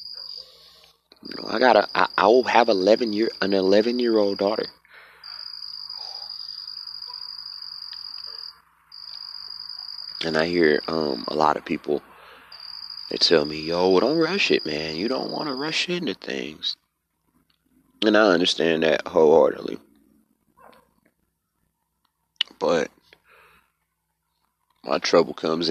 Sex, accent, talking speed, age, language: male, American, 110 wpm, 30-49, English